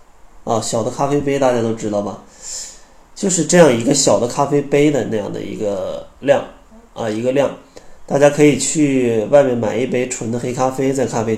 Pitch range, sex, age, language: 115-145 Hz, male, 20-39, Chinese